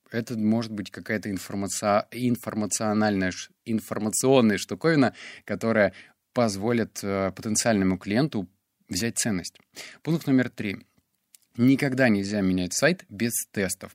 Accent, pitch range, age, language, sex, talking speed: native, 100-130 Hz, 30-49, Russian, male, 90 wpm